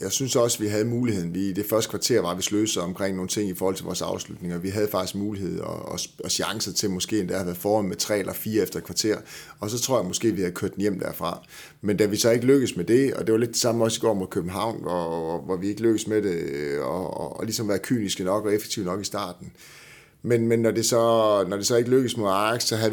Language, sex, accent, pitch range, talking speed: Danish, male, native, 90-105 Hz, 285 wpm